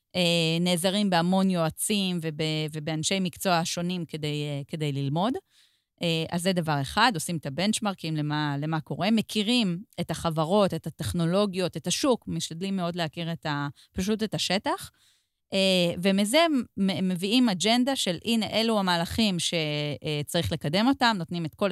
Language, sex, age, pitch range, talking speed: Hebrew, female, 30-49, 165-215 Hz, 135 wpm